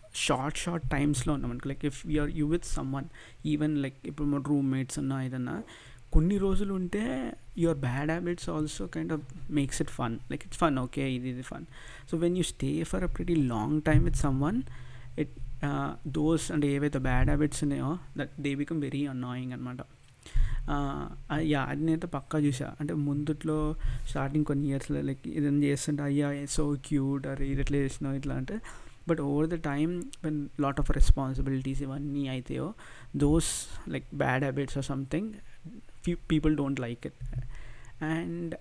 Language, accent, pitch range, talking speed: Telugu, native, 135-155 Hz, 165 wpm